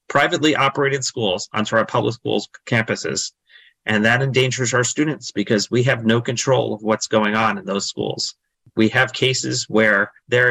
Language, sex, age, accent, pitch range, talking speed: English, male, 30-49, American, 110-130 Hz, 170 wpm